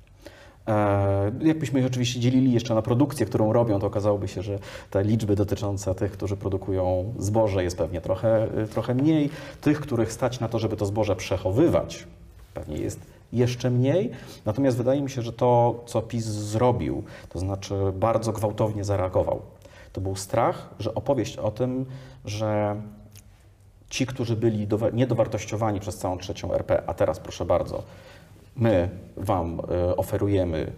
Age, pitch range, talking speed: 40-59, 95-115 Hz, 145 wpm